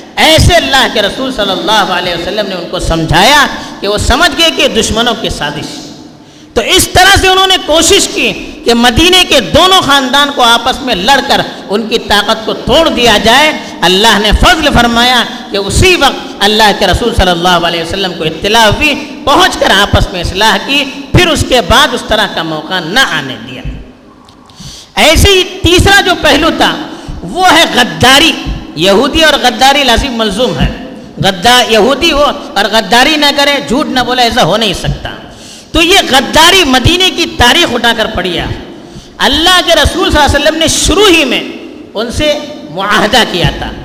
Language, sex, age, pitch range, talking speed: Urdu, female, 50-69, 215-300 Hz, 180 wpm